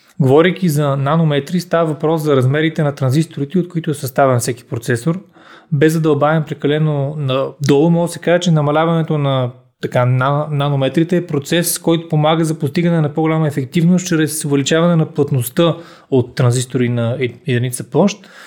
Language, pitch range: Bulgarian, 135-170 Hz